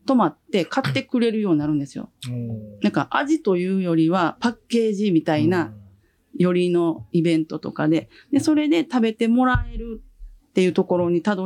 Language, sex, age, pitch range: Japanese, female, 40-59, 155-245 Hz